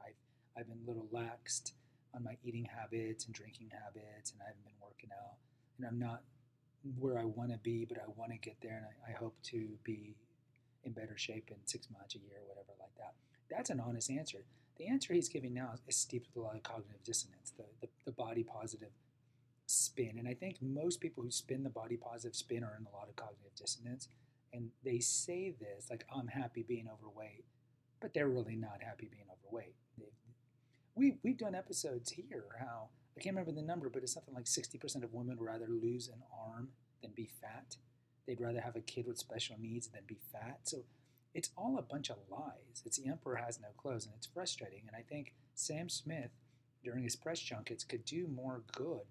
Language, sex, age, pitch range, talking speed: English, male, 30-49, 115-130 Hz, 210 wpm